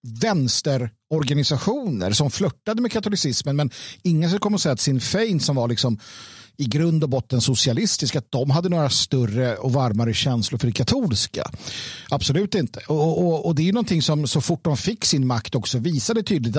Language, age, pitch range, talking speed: Swedish, 50-69, 125-170 Hz, 180 wpm